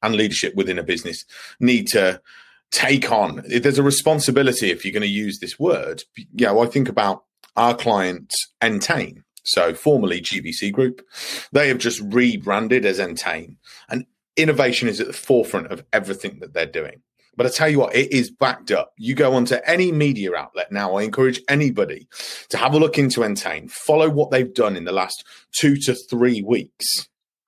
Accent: British